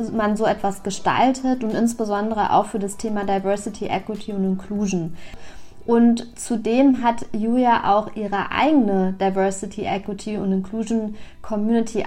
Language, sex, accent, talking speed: German, female, German, 130 wpm